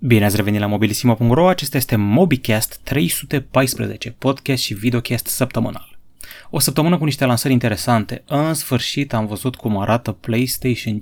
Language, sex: Romanian, male